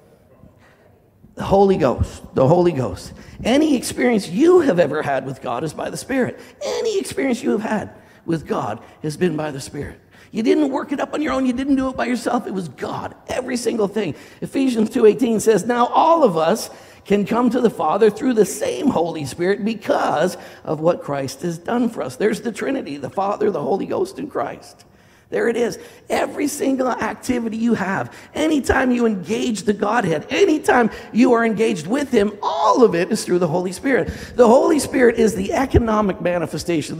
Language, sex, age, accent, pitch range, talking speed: English, male, 50-69, American, 175-240 Hz, 195 wpm